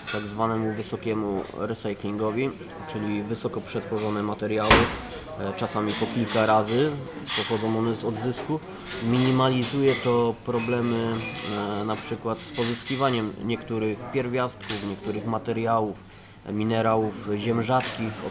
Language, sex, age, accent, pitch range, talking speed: Polish, male, 20-39, native, 110-125 Hz, 100 wpm